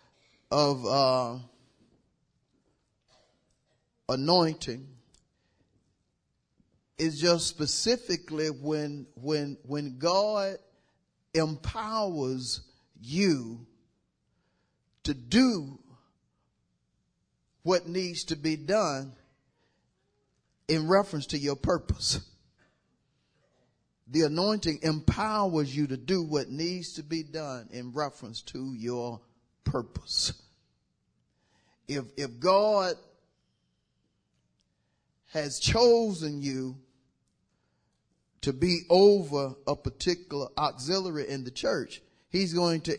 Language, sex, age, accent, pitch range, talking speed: English, male, 40-59, American, 130-175 Hz, 80 wpm